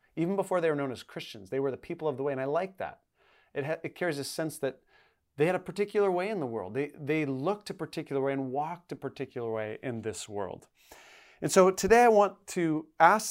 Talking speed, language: 245 wpm, English